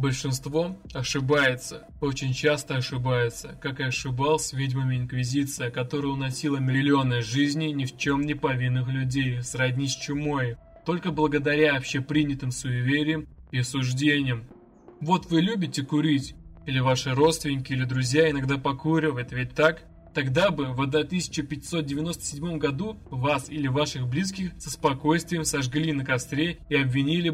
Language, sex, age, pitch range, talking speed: Russian, male, 20-39, 135-160 Hz, 125 wpm